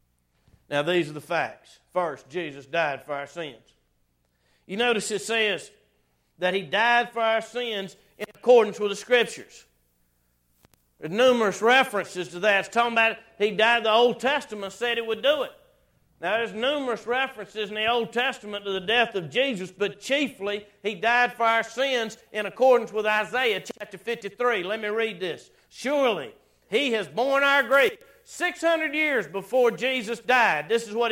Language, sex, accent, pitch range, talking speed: English, male, American, 205-255 Hz, 170 wpm